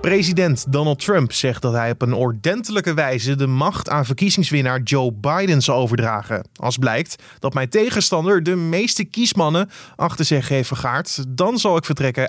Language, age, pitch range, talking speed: Dutch, 20-39, 125-165 Hz, 165 wpm